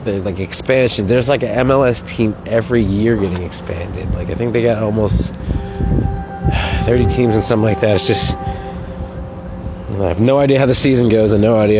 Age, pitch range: 30-49, 90-115 Hz